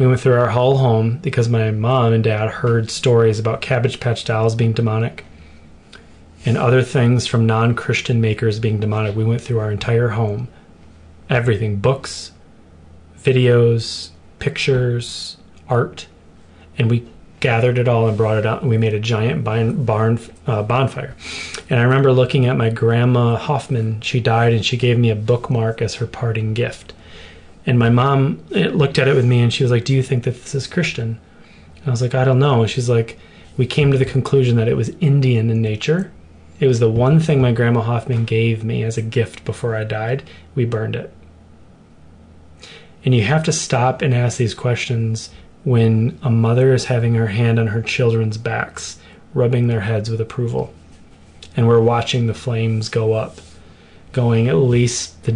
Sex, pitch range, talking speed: male, 110-125 Hz, 185 wpm